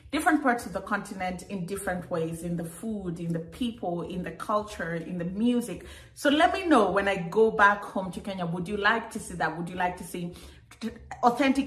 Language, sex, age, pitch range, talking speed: English, female, 30-49, 175-215 Hz, 220 wpm